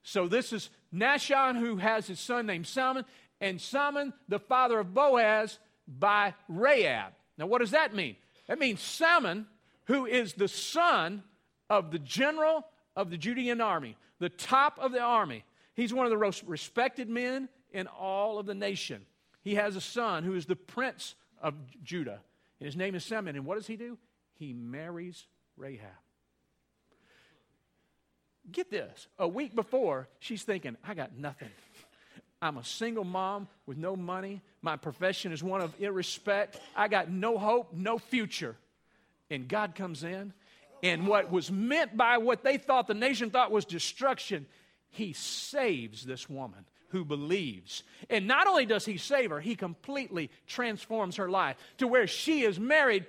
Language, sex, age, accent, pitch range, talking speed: English, male, 50-69, American, 175-245 Hz, 165 wpm